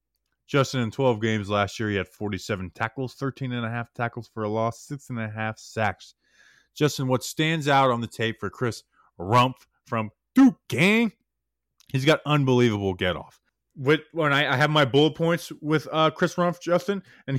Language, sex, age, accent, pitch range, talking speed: English, male, 20-39, American, 110-150 Hz, 190 wpm